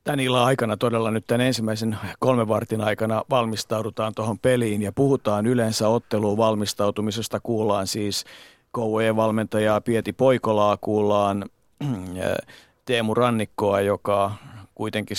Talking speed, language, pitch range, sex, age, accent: 105 wpm, Finnish, 100-115 Hz, male, 50-69, native